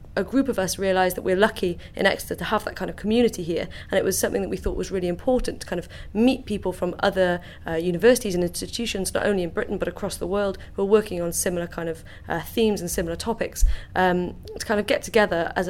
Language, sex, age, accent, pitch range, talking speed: English, female, 30-49, British, 180-215 Hz, 250 wpm